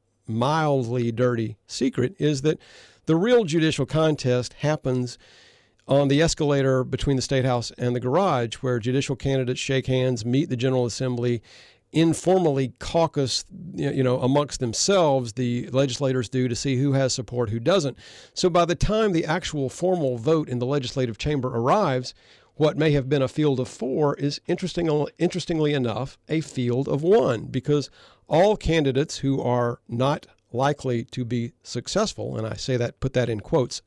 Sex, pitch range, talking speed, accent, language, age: male, 120-150 Hz, 160 wpm, American, English, 50-69